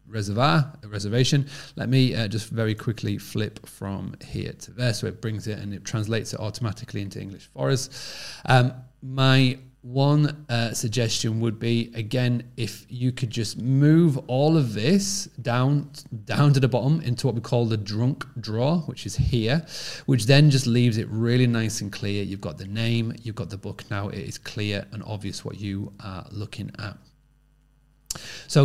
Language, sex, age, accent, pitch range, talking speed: English, male, 30-49, British, 110-130 Hz, 180 wpm